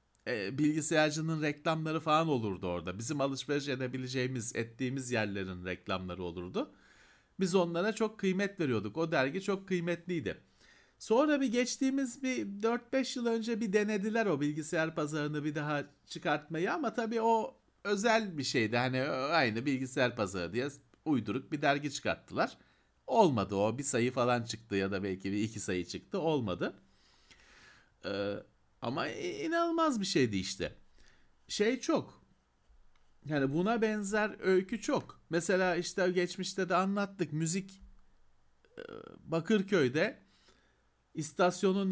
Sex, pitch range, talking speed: male, 135-205 Hz, 125 wpm